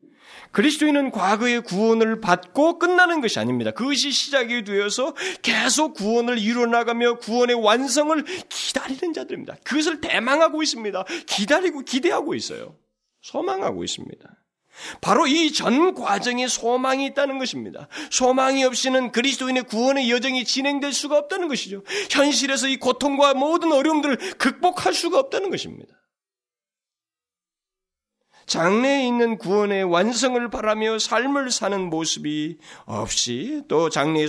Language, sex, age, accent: Korean, male, 30-49, native